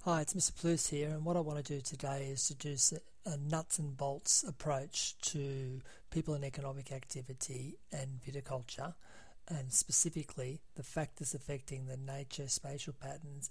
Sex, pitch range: male, 130-150 Hz